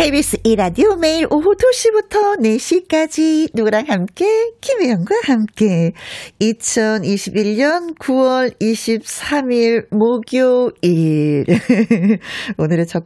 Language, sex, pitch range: Korean, female, 195-260 Hz